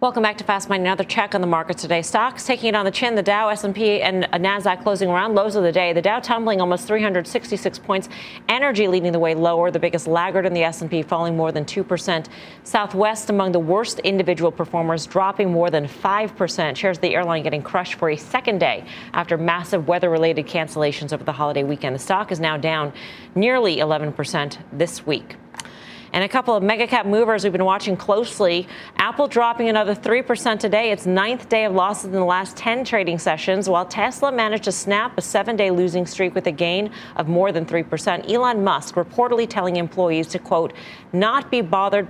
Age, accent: 40-59, American